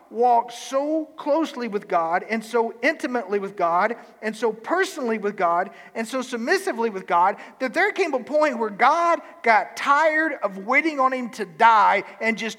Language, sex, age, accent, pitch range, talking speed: English, male, 40-59, American, 220-275 Hz, 175 wpm